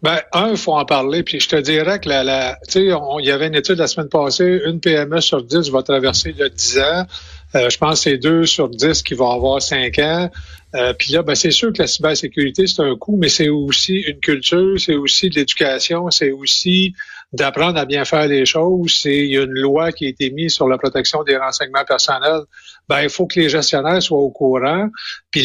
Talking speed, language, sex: 230 wpm, French, male